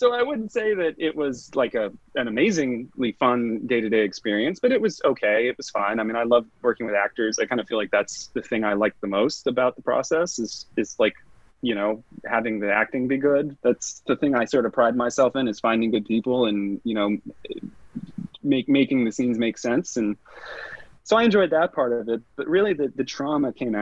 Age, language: 30-49, English